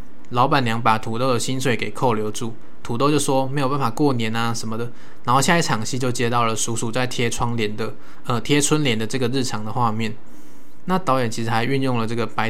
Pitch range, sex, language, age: 115-135 Hz, male, Chinese, 20-39